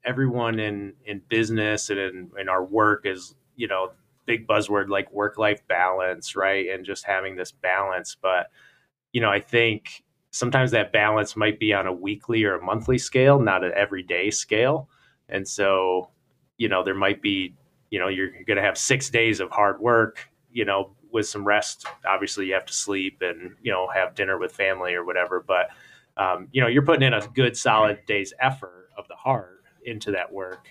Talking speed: 195 wpm